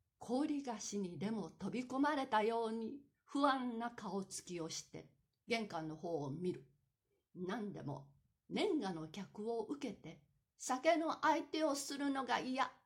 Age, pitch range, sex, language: 60-79, 185-280 Hz, female, Japanese